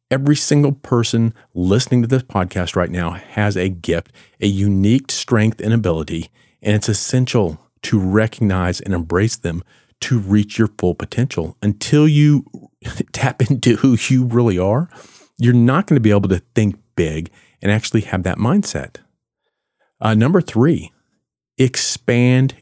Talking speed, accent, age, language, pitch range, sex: 150 wpm, American, 40-59, English, 95-125 Hz, male